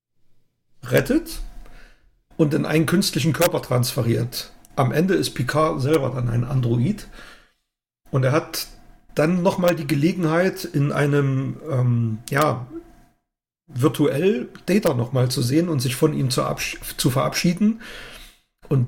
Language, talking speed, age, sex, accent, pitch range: German, 125 wpm, 40-59, male, German, 135-165 Hz